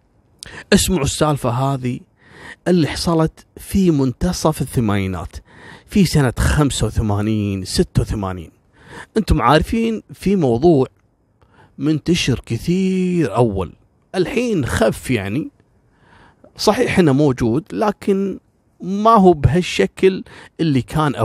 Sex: male